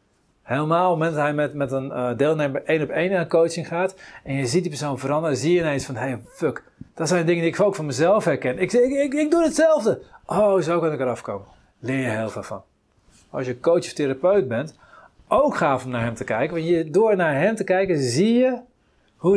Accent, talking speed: Dutch, 240 wpm